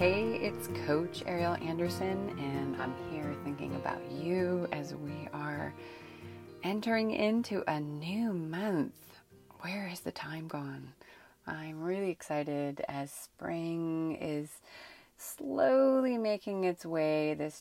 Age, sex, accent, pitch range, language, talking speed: 30-49, female, American, 150-185 Hz, English, 120 wpm